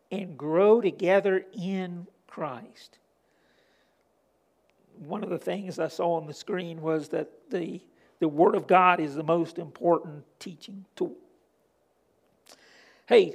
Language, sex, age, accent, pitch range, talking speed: English, male, 50-69, American, 165-220 Hz, 125 wpm